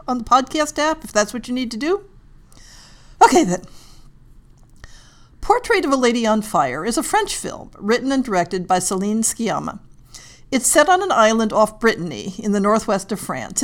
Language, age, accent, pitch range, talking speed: English, 50-69, American, 215-305 Hz, 180 wpm